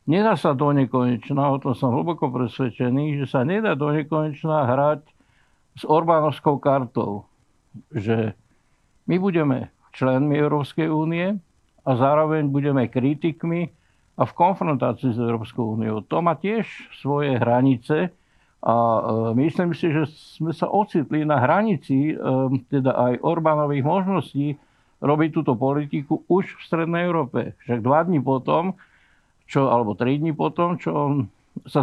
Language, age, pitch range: Slovak, 60-79, 125-155 Hz